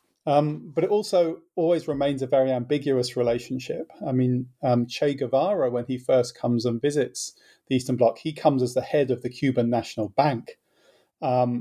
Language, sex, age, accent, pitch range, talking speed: English, male, 40-59, British, 120-140 Hz, 180 wpm